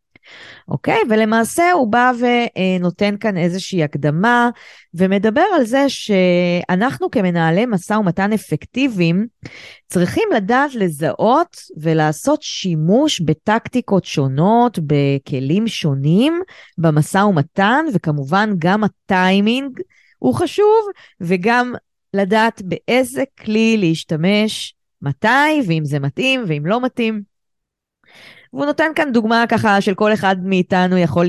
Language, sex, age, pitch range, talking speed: Hebrew, female, 20-39, 160-225 Hz, 105 wpm